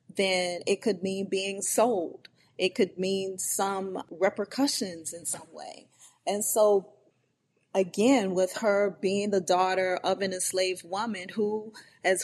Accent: American